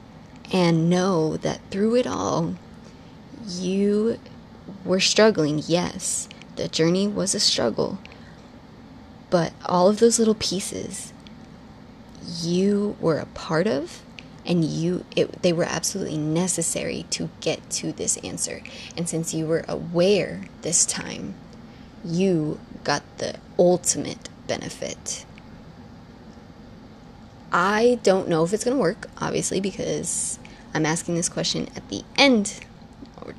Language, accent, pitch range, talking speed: English, American, 160-200 Hz, 120 wpm